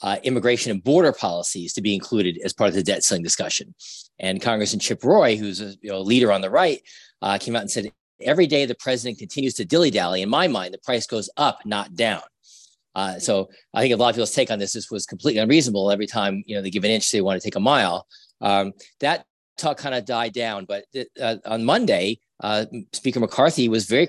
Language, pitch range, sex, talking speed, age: English, 100-125 Hz, male, 230 wpm, 40-59